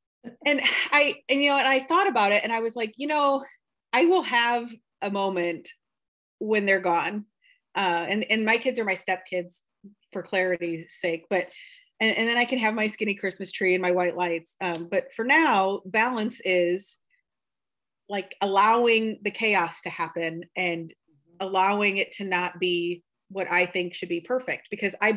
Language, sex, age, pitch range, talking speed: English, female, 30-49, 185-235 Hz, 180 wpm